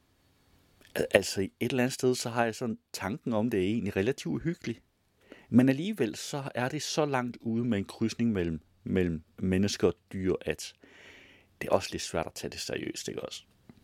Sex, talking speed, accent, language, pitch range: male, 190 wpm, native, Danish, 90-130 Hz